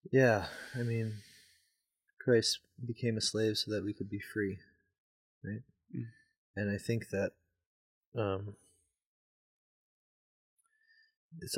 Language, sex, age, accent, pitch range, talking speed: English, male, 20-39, American, 90-120 Hz, 105 wpm